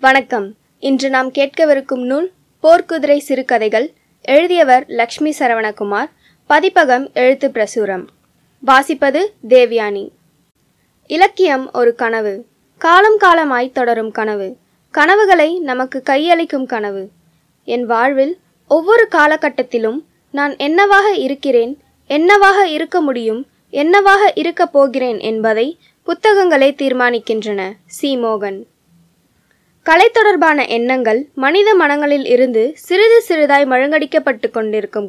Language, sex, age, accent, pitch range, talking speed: Tamil, female, 20-39, native, 235-320 Hz, 90 wpm